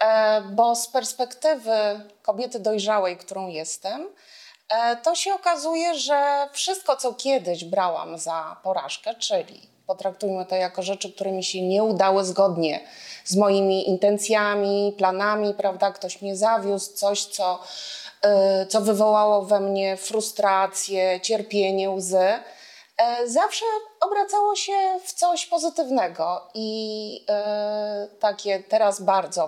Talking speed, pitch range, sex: 115 wpm, 190-245 Hz, female